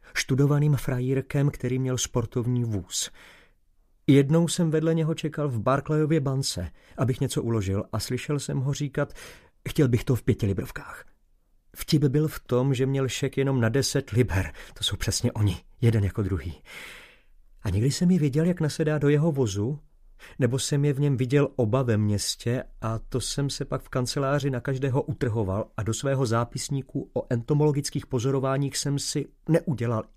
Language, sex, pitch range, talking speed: Slovak, male, 115-155 Hz, 170 wpm